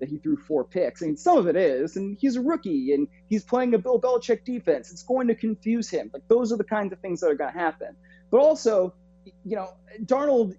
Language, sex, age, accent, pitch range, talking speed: English, male, 30-49, American, 150-210 Hz, 250 wpm